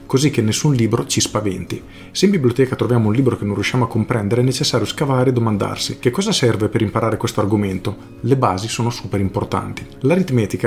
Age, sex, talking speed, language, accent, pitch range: 40-59, male, 195 wpm, Italian, native, 110-130 Hz